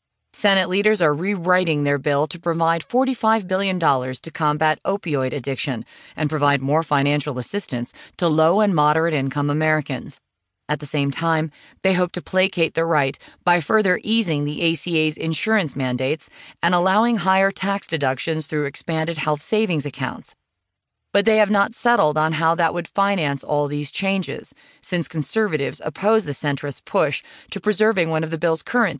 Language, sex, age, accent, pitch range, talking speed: English, female, 30-49, American, 145-190 Hz, 160 wpm